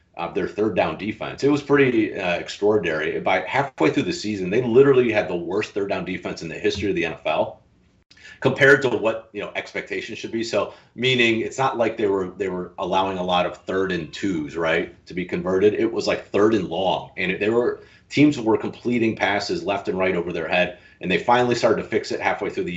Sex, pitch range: male, 90-120 Hz